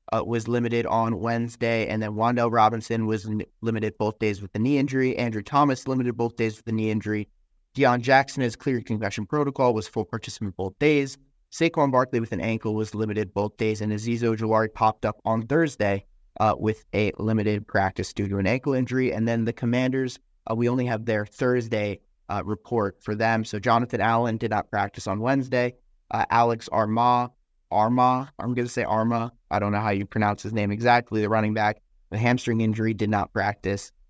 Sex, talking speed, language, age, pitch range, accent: male, 200 wpm, English, 30-49, 105-125 Hz, American